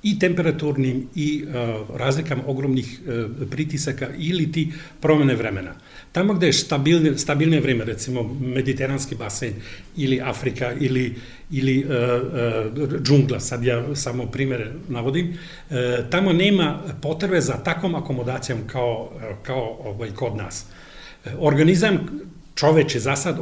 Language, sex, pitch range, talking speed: Croatian, male, 125-155 Hz, 130 wpm